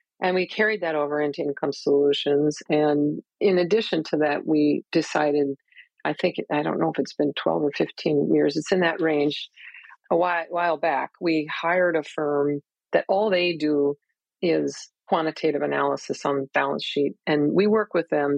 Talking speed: 175 wpm